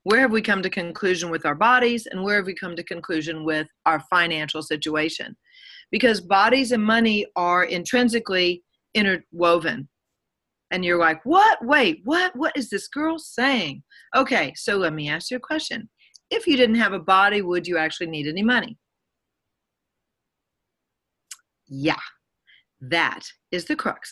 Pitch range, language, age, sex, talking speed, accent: 165-245 Hz, English, 40-59, female, 155 wpm, American